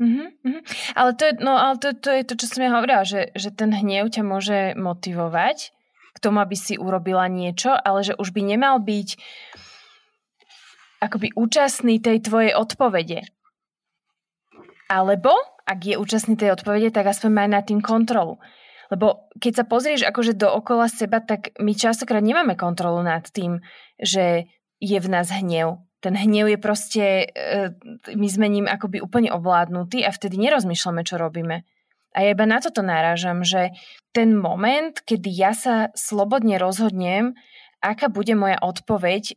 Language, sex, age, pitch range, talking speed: Slovak, female, 20-39, 190-235 Hz, 155 wpm